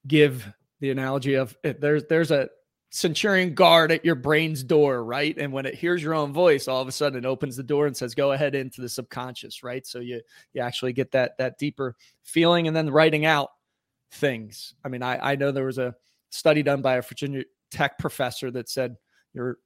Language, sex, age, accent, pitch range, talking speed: English, male, 30-49, American, 130-160 Hz, 210 wpm